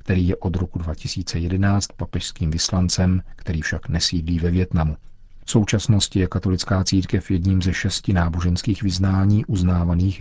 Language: Czech